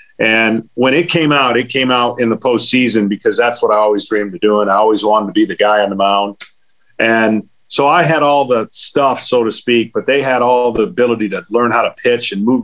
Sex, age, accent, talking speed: male, 40-59, American, 245 wpm